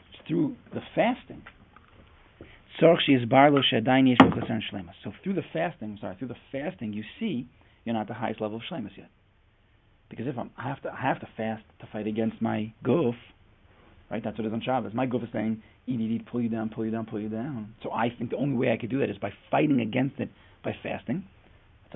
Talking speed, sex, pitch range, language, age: 210 wpm, male, 100-125 Hz, English, 40-59